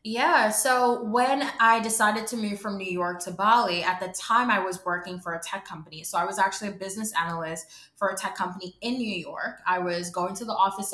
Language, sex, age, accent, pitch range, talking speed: English, female, 20-39, American, 180-220 Hz, 230 wpm